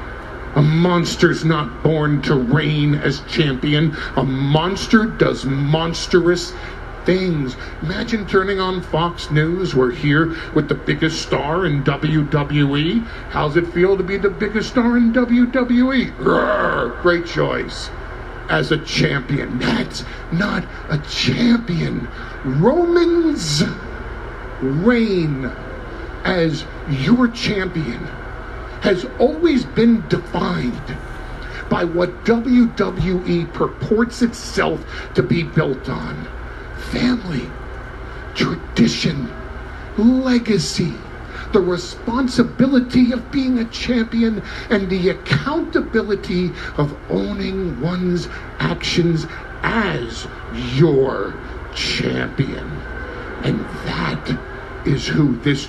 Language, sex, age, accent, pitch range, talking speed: English, male, 50-69, American, 150-225 Hz, 95 wpm